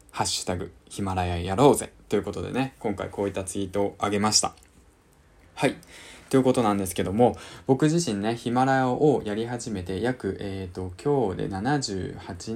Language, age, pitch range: Japanese, 20-39, 95-130 Hz